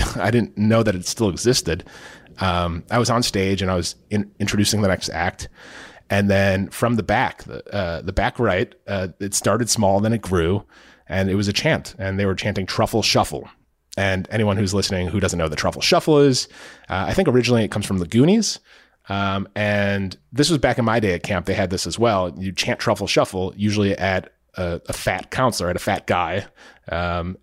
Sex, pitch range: male, 95-115 Hz